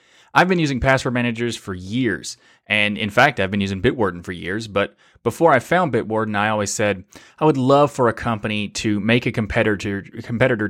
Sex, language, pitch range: male, English, 110-140 Hz